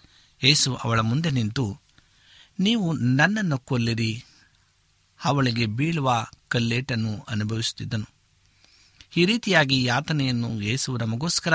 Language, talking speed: Kannada, 80 wpm